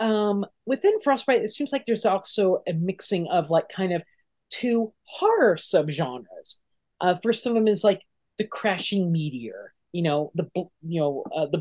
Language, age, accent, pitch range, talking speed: English, 30-49, American, 160-225 Hz, 170 wpm